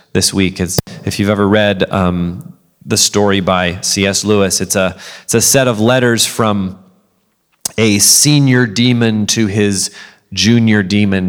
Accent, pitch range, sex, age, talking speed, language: American, 100-125 Hz, male, 30-49, 150 wpm, English